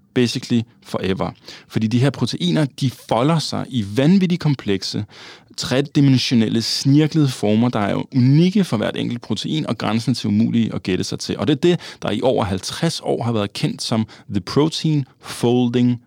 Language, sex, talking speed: Danish, male, 170 wpm